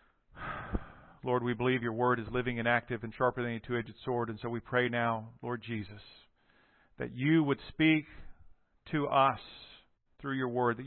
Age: 50-69